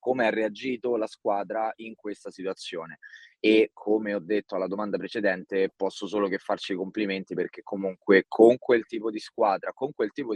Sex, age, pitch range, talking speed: male, 20-39, 100-110 Hz, 180 wpm